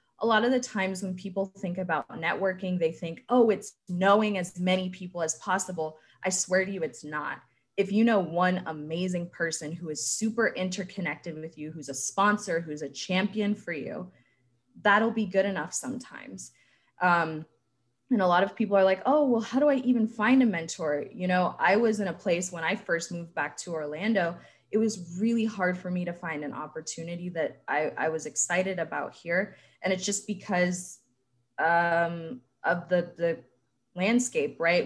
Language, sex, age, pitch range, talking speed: English, female, 20-39, 165-215 Hz, 190 wpm